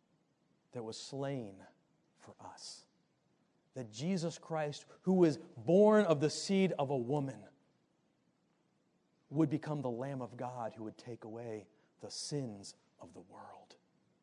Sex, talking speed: male, 135 wpm